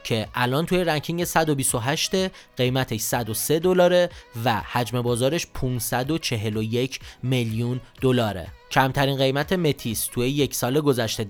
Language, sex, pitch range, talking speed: Persian, male, 120-150 Hz, 115 wpm